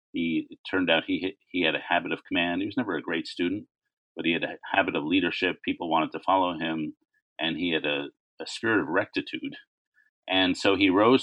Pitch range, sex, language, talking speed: 270-315 Hz, male, English, 220 wpm